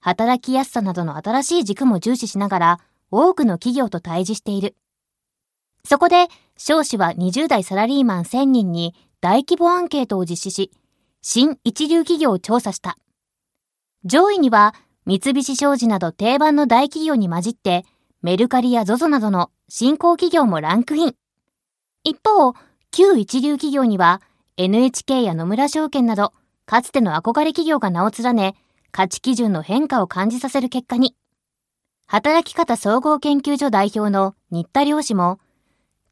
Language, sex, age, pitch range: Japanese, female, 20-39, 200-275 Hz